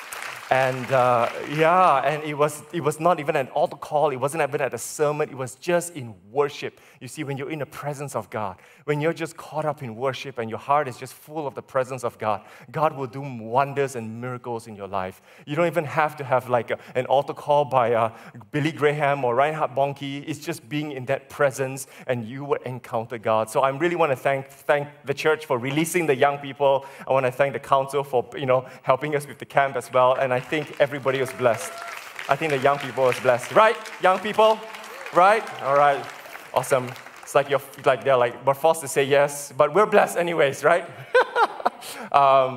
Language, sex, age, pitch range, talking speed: English, male, 20-39, 125-150 Hz, 220 wpm